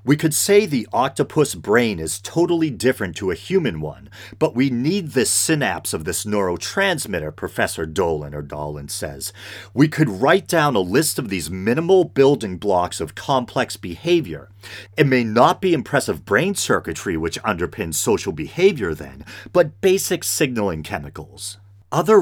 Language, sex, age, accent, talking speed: English, male, 40-59, American, 155 wpm